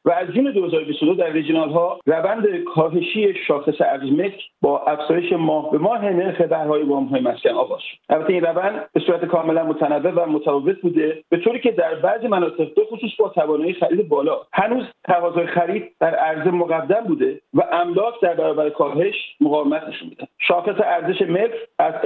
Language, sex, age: Persian, male, 50-69